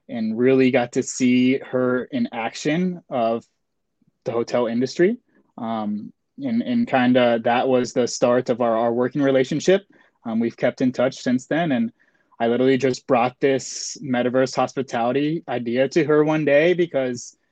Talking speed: 160 wpm